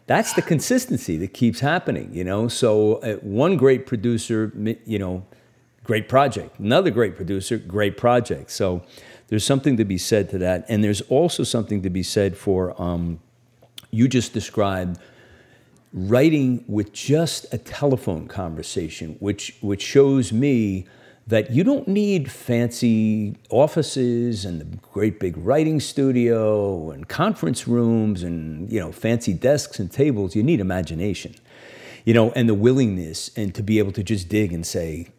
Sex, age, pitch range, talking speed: male, 50-69, 95-120 Hz, 155 wpm